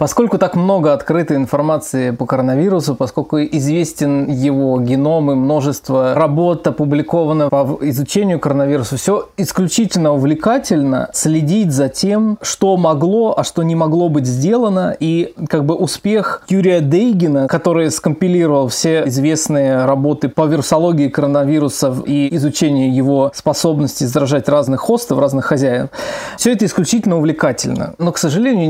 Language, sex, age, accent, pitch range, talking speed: Russian, male, 20-39, native, 145-180 Hz, 130 wpm